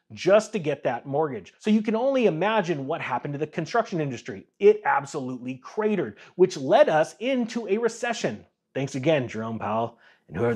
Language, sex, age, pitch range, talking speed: English, male, 30-49, 135-195 Hz, 175 wpm